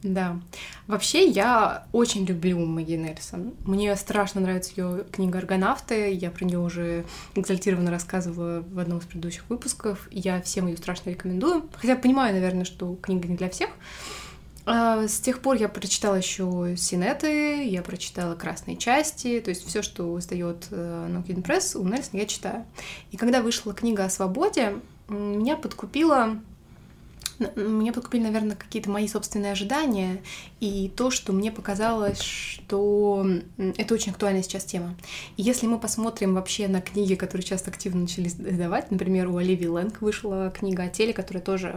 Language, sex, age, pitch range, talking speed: Russian, female, 20-39, 180-220 Hz, 155 wpm